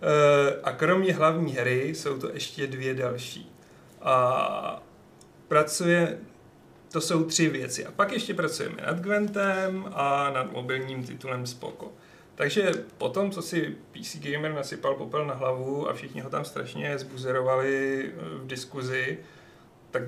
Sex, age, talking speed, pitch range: male, 40-59, 135 wpm, 130-165 Hz